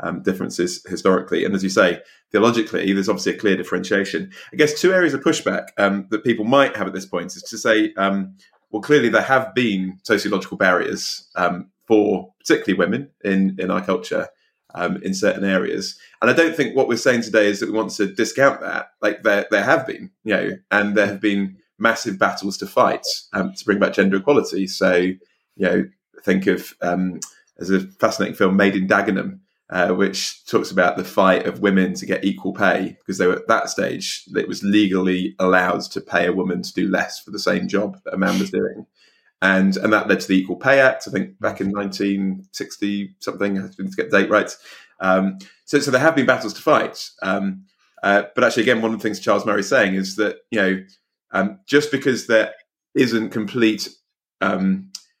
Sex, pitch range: male, 95-115 Hz